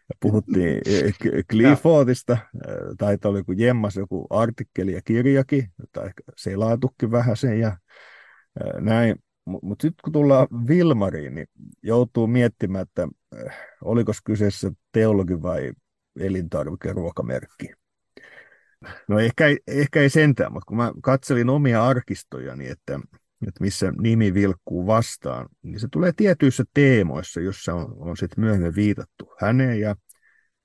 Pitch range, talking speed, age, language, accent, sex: 95-125 Hz, 120 wpm, 50-69, Finnish, native, male